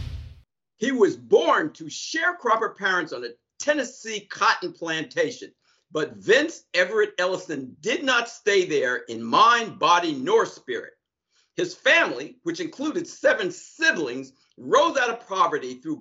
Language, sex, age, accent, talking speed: English, male, 50-69, American, 130 wpm